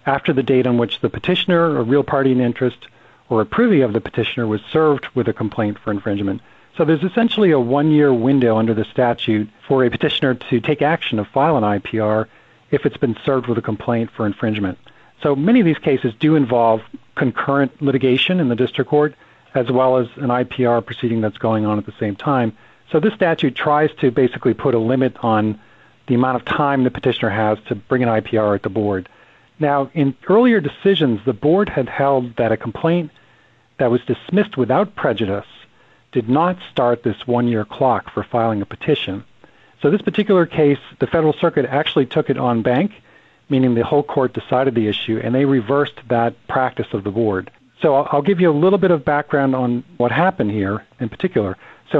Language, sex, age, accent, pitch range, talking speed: English, male, 50-69, American, 115-150 Hz, 200 wpm